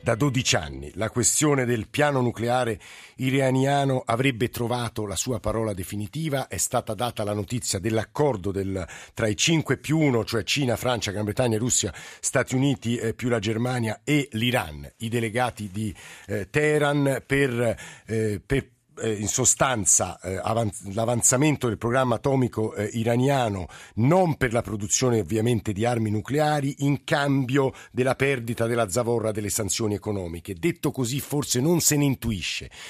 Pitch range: 105-130 Hz